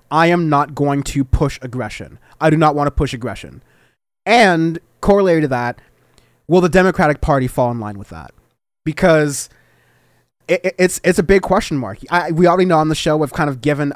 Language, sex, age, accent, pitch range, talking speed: English, male, 20-39, American, 130-165 Hz, 200 wpm